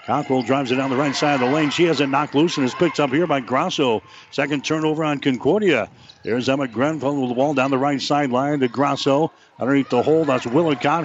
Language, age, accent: English, 60-79, American